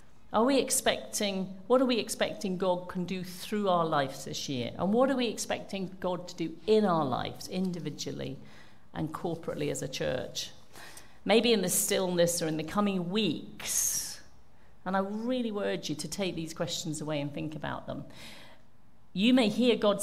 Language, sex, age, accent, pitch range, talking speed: English, female, 50-69, British, 160-220 Hz, 175 wpm